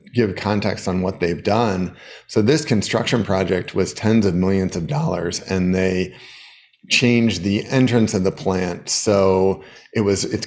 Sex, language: male, English